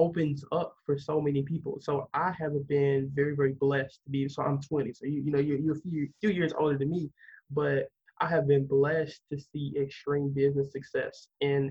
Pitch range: 140-155 Hz